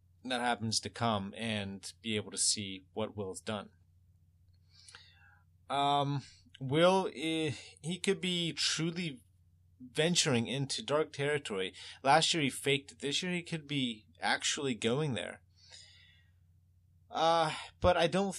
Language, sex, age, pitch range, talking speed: English, male, 30-49, 90-135 Hz, 125 wpm